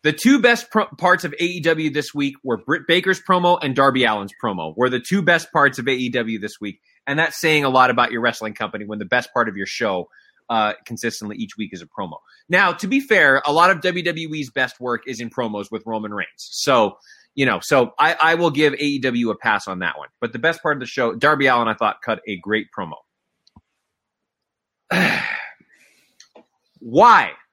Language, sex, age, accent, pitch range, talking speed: English, male, 20-39, American, 125-200 Hz, 205 wpm